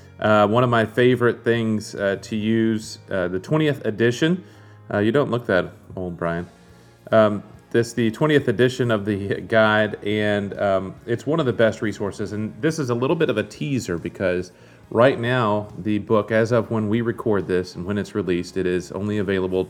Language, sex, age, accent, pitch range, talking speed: English, male, 40-59, American, 95-115 Hz, 190 wpm